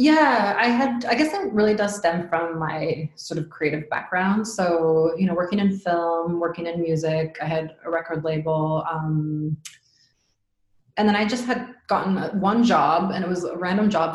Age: 20-39